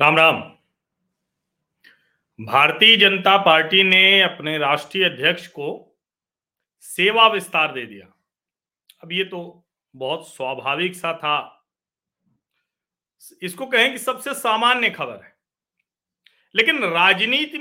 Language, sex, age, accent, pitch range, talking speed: Hindi, male, 40-59, native, 180-265 Hz, 100 wpm